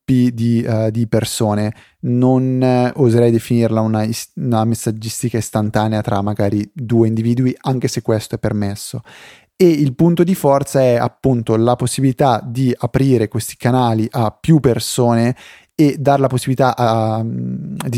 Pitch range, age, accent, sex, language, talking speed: 115-135 Hz, 30-49, native, male, Italian, 150 wpm